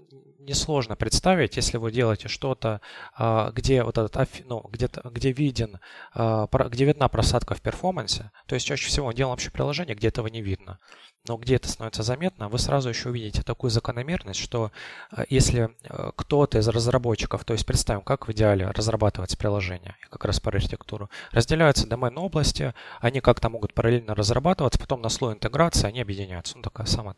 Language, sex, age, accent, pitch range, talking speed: Russian, male, 20-39, native, 105-130 Hz, 150 wpm